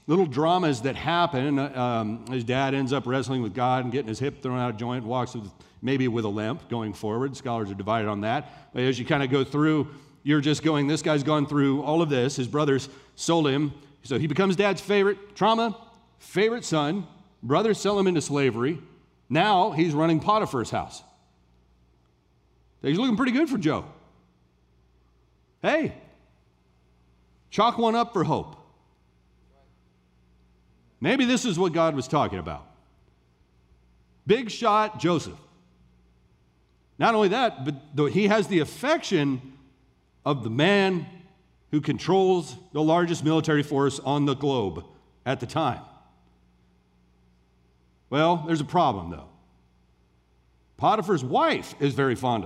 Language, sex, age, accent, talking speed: English, male, 40-59, American, 145 wpm